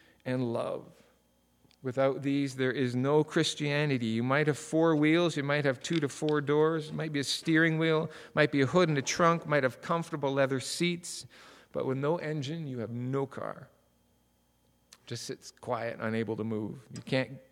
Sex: male